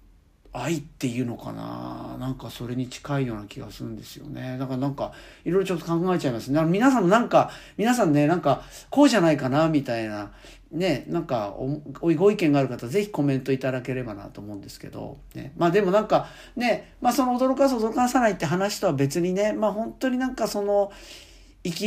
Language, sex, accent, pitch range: Japanese, male, native, 130-205 Hz